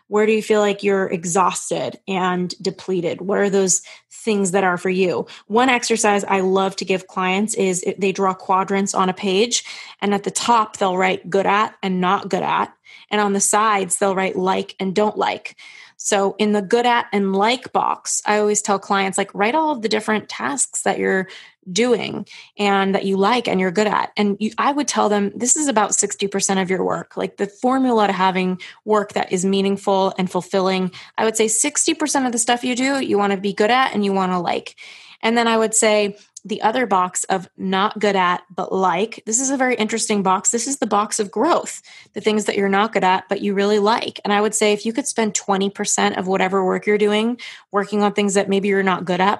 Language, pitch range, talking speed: English, 190-220 Hz, 225 wpm